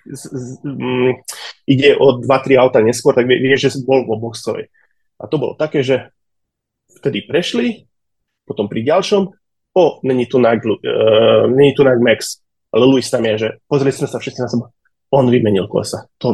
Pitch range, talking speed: 125-145 Hz, 170 wpm